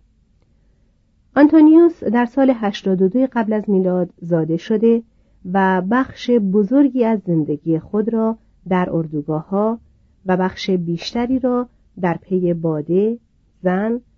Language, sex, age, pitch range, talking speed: Persian, female, 40-59, 160-225 Hz, 115 wpm